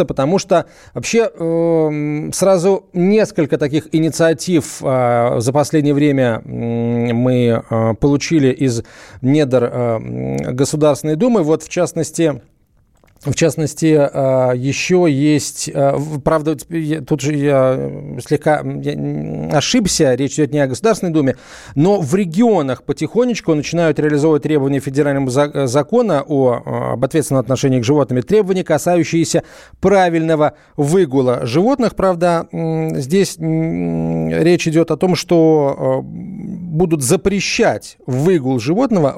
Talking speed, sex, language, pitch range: 100 wpm, male, Russian, 130-165 Hz